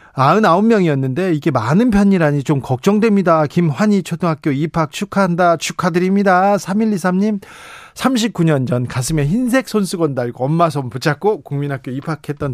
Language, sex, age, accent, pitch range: Korean, male, 40-59, native, 145-195 Hz